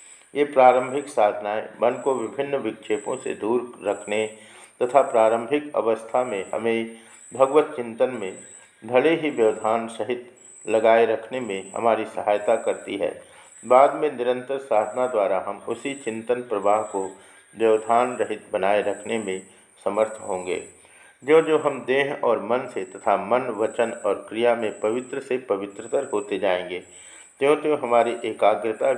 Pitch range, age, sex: 110-140 Hz, 50-69, male